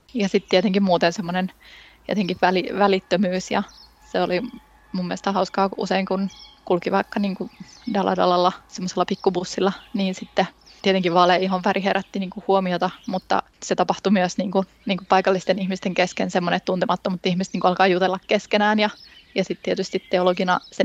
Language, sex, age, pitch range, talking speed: Finnish, female, 20-39, 180-200 Hz, 155 wpm